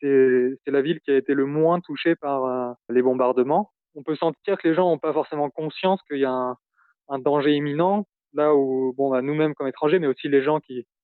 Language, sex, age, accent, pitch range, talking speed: French, male, 20-39, French, 130-155 Hz, 235 wpm